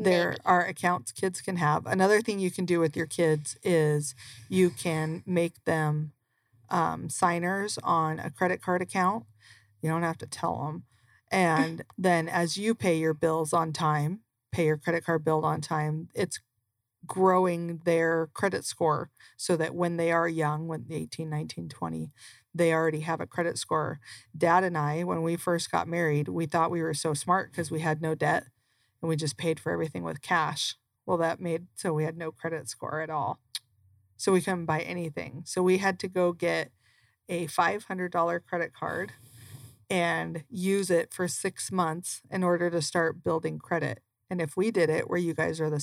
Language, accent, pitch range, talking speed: English, American, 150-175 Hz, 185 wpm